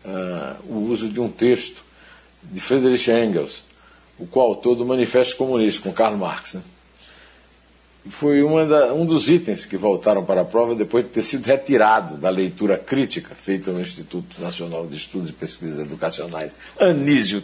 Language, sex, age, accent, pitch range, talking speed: Portuguese, male, 60-79, Brazilian, 95-120 Hz, 160 wpm